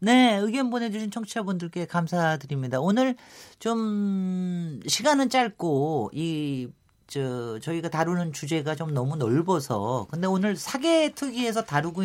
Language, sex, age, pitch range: Korean, male, 40-59, 140-210 Hz